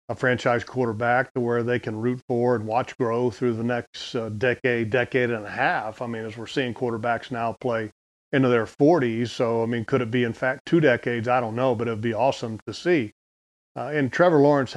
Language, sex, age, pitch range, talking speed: English, male, 40-59, 120-135 Hz, 230 wpm